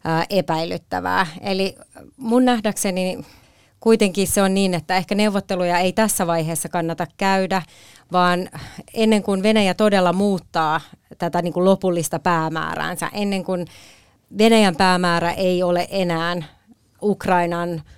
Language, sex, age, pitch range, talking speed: Finnish, female, 30-49, 170-200 Hz, 110 wpm